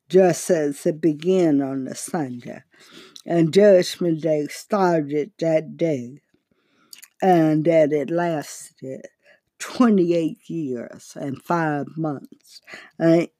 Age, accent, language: 60-79, American, English